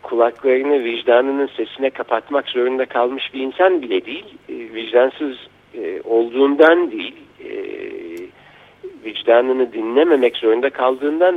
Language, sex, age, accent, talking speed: Turkish, male, 60-79, native, 90 wpm